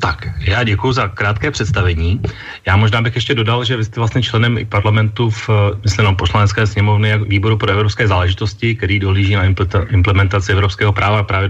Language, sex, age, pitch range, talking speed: Slovak, male, 30-49, 100-115 Hz, 160 wpm